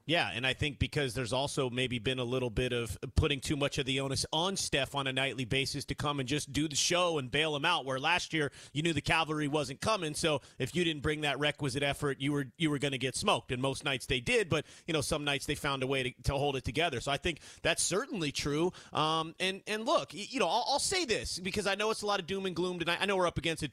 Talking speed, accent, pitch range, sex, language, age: 285 wpm, American, 145-195 Hz, male, English, 30-49